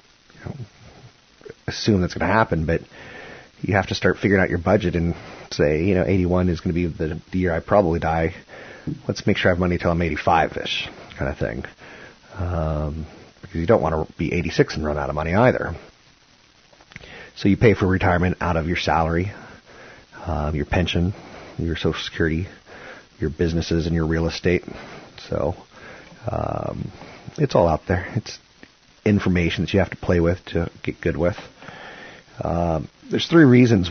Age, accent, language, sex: 30-49, American, English, male